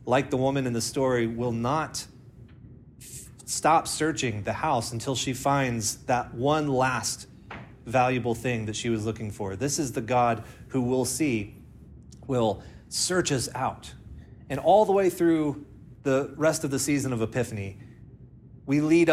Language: English